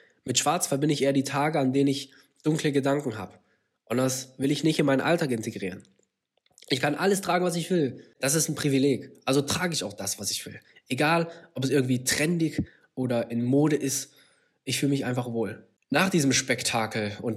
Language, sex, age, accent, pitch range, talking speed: German, male, 20-39, German, 130-165 Hz, 205 wpm